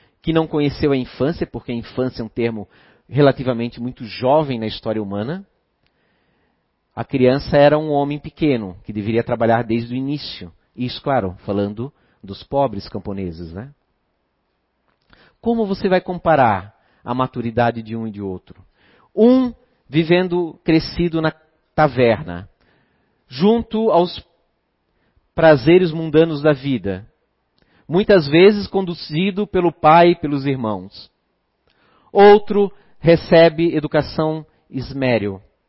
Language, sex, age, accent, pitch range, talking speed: Portuguese, male, 40-59, Brazilian, 115-170 Hz, 120 wpm